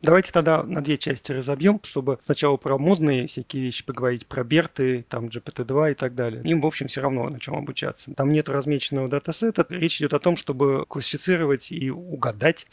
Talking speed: 190 wpm